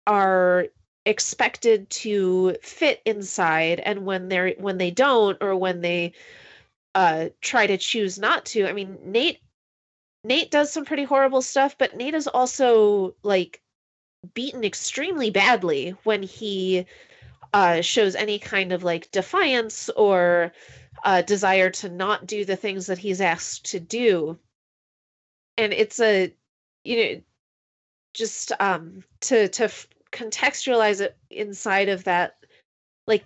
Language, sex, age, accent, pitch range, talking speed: English, female, 30-49, American, 180-225 Hz, 135 wpm